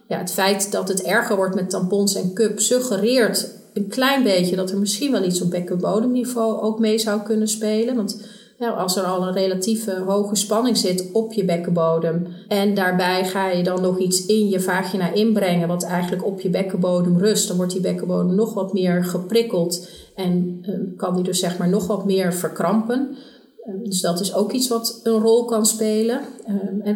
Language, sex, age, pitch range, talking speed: Dutch, female, 30-49, 180-220 Hz, 190 wpm